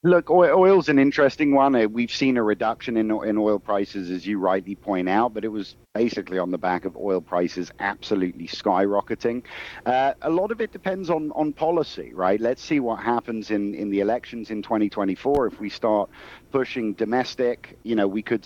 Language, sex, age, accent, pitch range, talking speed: English, male, 50-69, British, 95-115 Hz, 195 wpm